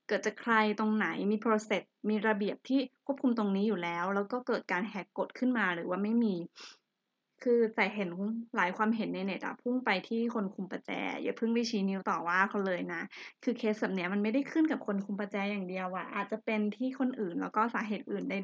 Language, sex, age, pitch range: Thai, female, 20-39, 195-230 Hz